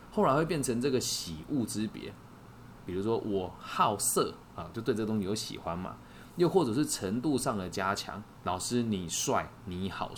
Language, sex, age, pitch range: Chinese, male, 20-39, 90-120 Hz